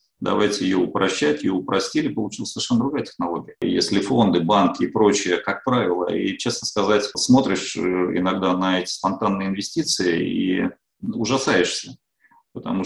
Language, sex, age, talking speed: Russian, male, 40-59, 130 wpm